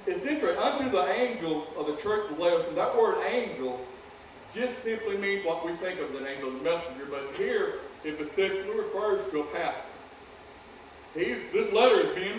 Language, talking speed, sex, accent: English, 195 wpm, male, American